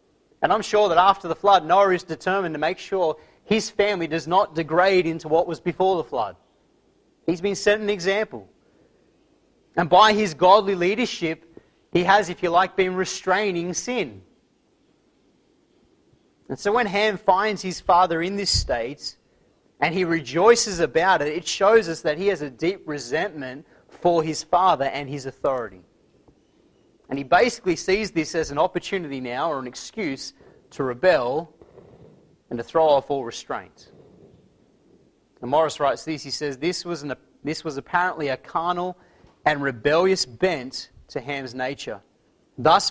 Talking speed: 160 wpm